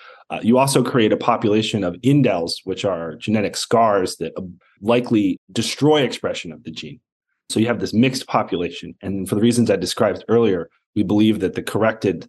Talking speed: 180 wpm